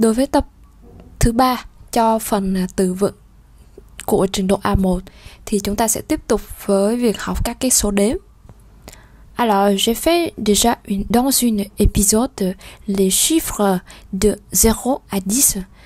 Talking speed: 150 wpm